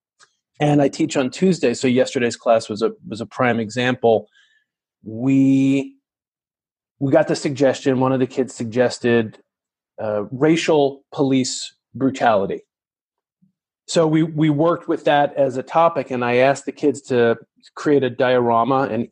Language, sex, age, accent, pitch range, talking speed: English, male, 30-49, American, 125-150 Hz, 150 wpm